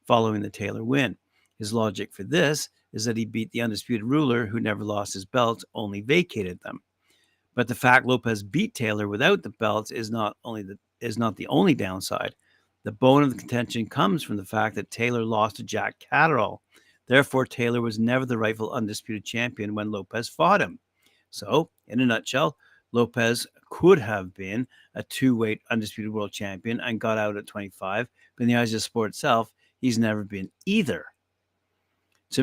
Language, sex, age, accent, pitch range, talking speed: English, male, 60-79, American, 105-125 Hz, 185 wpm